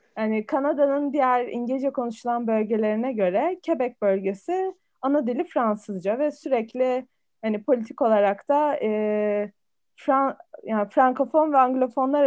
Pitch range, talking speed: 205-270 Hz, 115 wpm